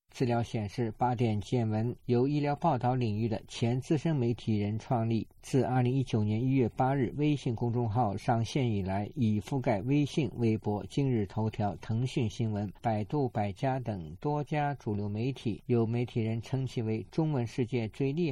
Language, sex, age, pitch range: Chinese, male, 50-69, 110-135 Hz